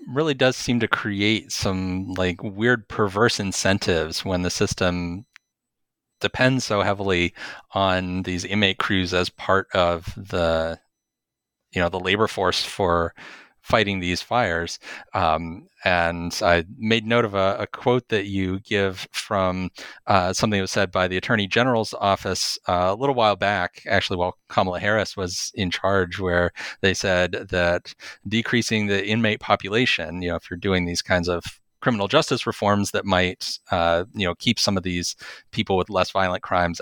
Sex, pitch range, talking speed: male, 90-110 Hz, 165 wpm